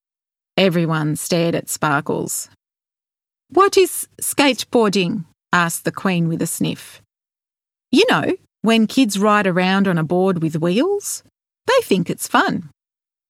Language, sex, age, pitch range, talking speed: English, female, 30-49, 170-230 Hz, 125 wpm